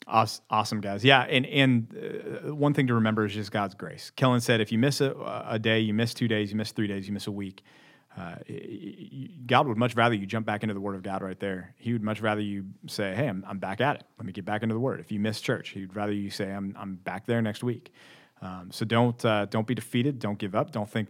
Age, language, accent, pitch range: 40-59, English, American, 100-125 Hz